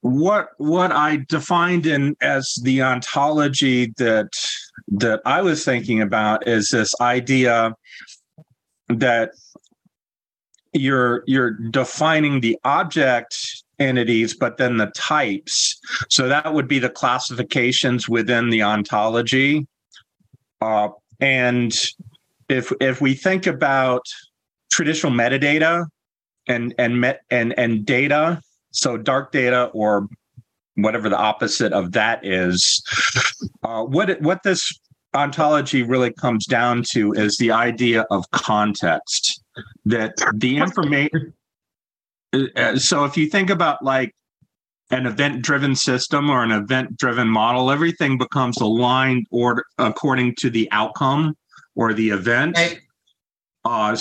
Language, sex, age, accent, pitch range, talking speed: English, male, 40-59, American, 115-145 Hz, 115 wpm